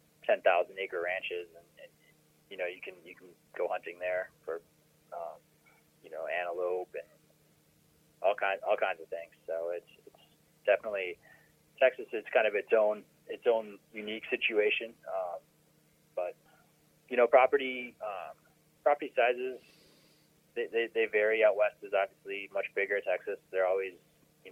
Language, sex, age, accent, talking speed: English, male, 20-39, American, 155 wpm